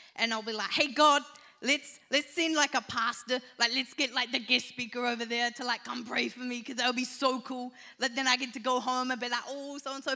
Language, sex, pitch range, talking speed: English, female, 230-275 Hz, 265 wpm